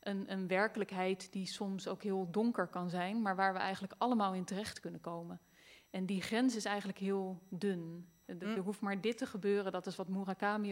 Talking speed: 200 wpm